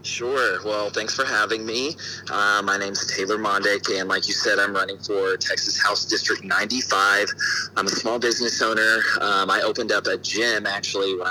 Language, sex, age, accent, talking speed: English, male, 30-49, American, 190 wpm